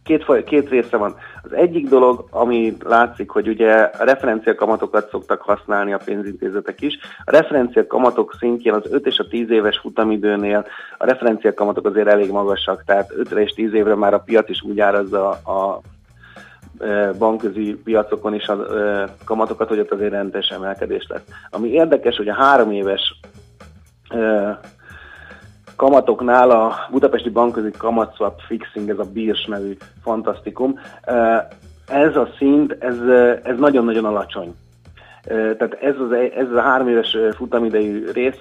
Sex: male